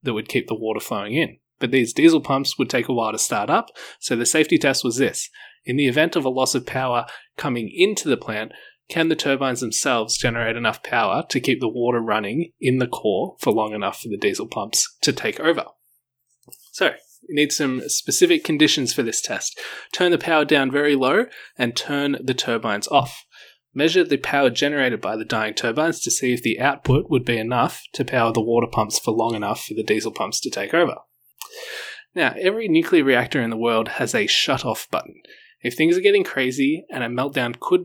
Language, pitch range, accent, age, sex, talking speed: English, 120-160 Hz, Australian, 20-39, male, 210 wpm